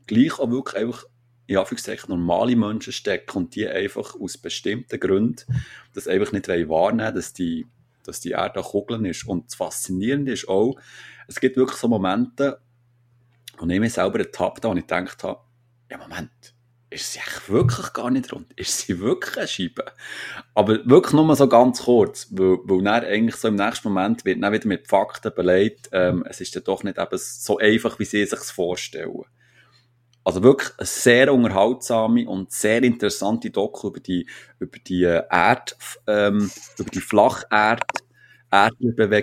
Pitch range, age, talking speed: 105-125 Hz, 30-49, 170 wpm